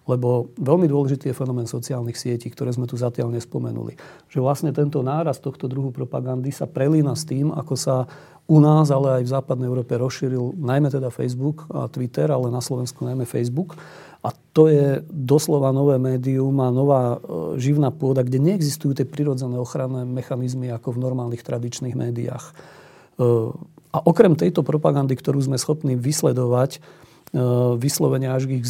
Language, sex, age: Slovak, male, 40-59